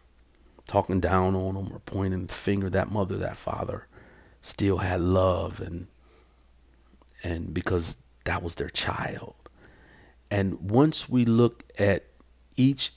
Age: 40-59